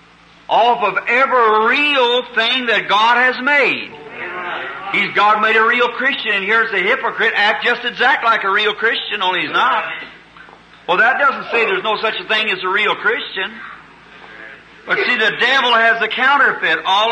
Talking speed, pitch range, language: 175 wpm, 215-260 Hz, English